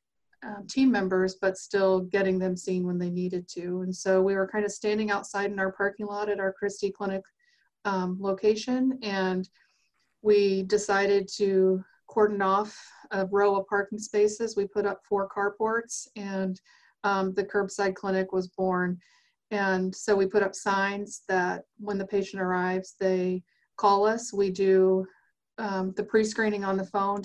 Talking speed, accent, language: 165 wpm, American, English